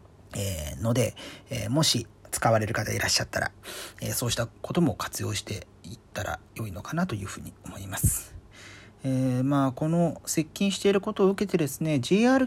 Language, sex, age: Japanese, male, 40-59